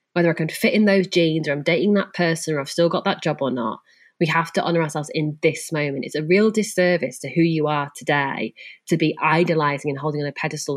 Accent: British